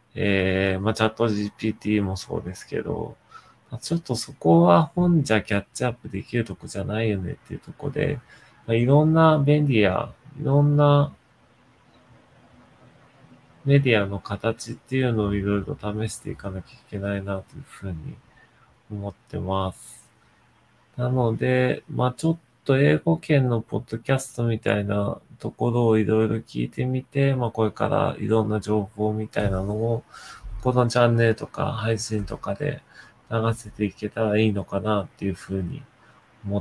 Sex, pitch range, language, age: male, 100-125 Hz, Japanese, 20-39